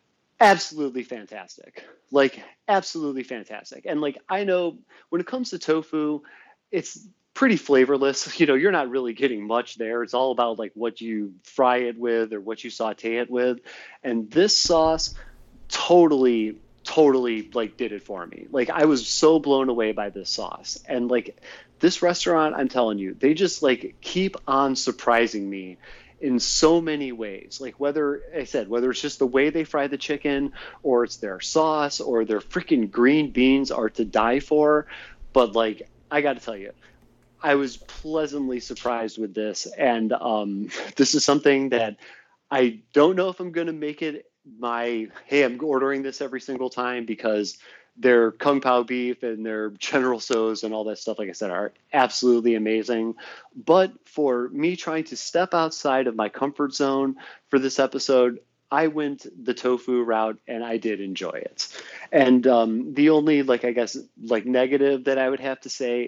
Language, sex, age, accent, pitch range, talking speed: English, male, 30-49, American, 115-145 Hz, 180 wpm